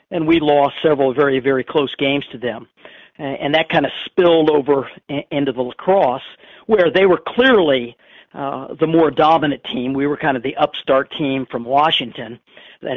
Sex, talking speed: male, 175 wpm